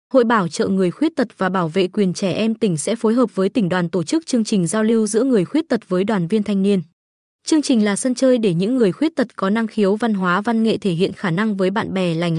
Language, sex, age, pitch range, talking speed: Vietnamese, female, 20-39, 195-245 Hz, 285 wpm